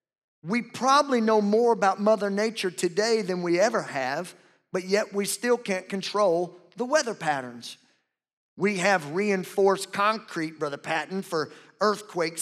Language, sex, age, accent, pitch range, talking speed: English, male, 50-69, American, 140-185 Hz, 140 wpm